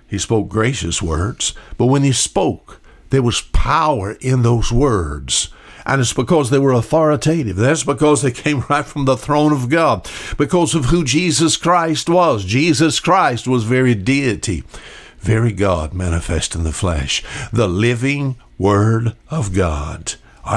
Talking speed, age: 155 wpm, 60-79